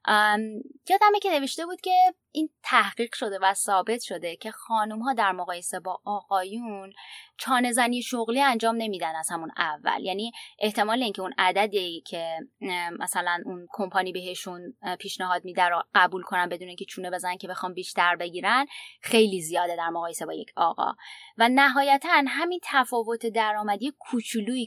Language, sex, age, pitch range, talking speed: Persian, female, 20-39, 180-255 Hz, 155 wpm